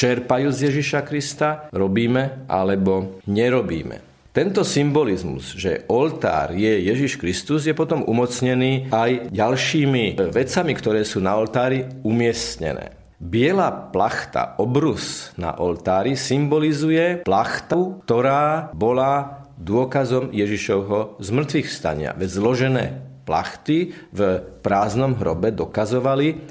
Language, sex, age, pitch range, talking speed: Slovak, male, 40-59, 105-140 Hz, 100 wpm